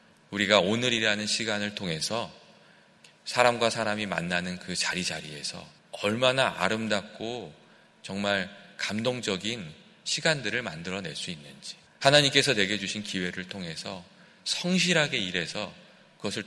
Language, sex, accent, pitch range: Korean, male, native, 95-120 Hz